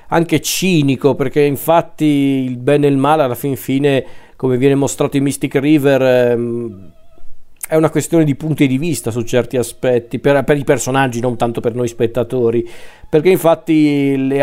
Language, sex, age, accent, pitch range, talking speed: Italian, male, 40-59, native, 125-150 Hz, 165 wpm